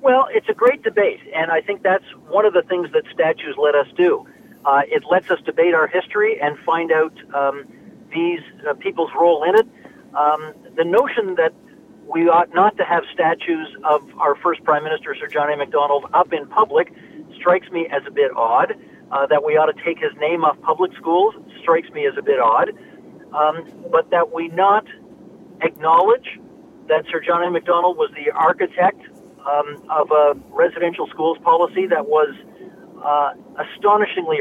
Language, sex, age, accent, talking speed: English, male, 50-69, American, 180 wpm